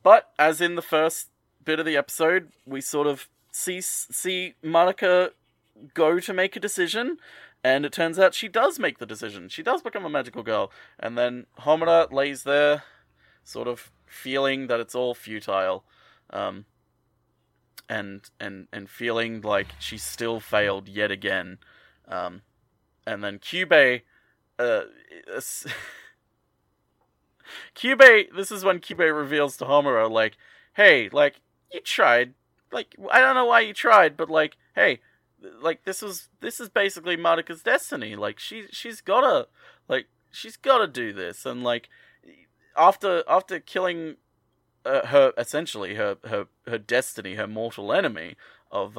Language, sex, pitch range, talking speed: English, male, 115-175 Hz, 145 wpm